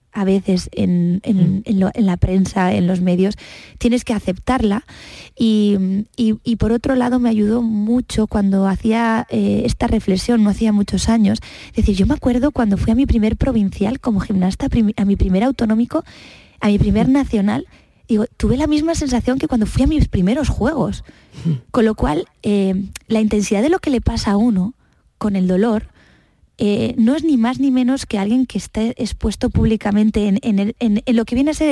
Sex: female